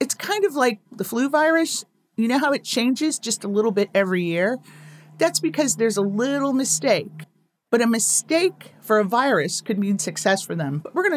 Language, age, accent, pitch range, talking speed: English, 40-59, American, 170-230 Hz, 205 wpm